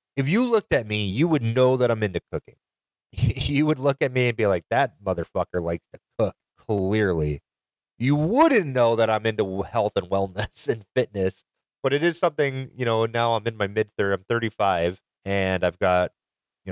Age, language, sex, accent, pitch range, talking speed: 30-49, English, male, American, 90-120 Hz, 195 wpm